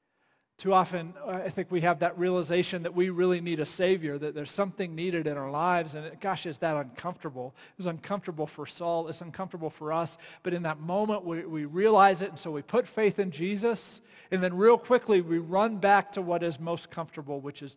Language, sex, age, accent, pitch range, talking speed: English, male, 40-59, American, 150-180 Hz, 215 wpm